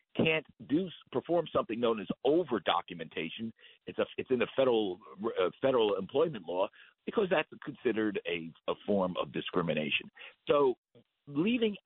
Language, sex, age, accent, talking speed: English, male, 50-69, American, 135 wpm